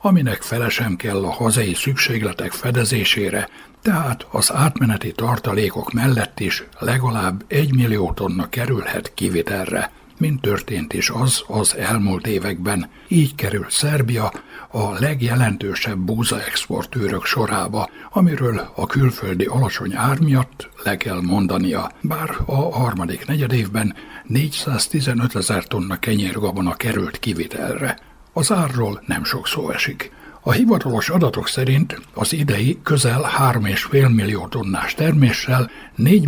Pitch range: 105-135 Hz